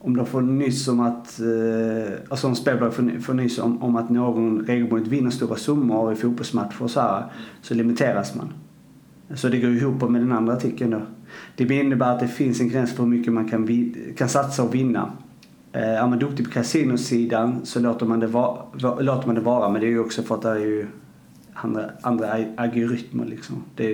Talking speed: 200 wpm